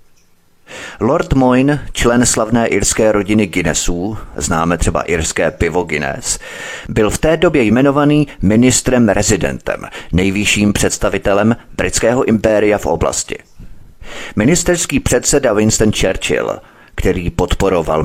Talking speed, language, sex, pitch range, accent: 105 wpm, Czech, male, 90-110 Hz, native